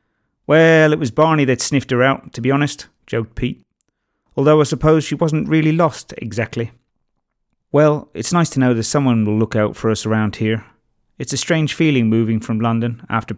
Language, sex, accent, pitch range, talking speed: English, male, British, 110-155 Hz, 195 wpm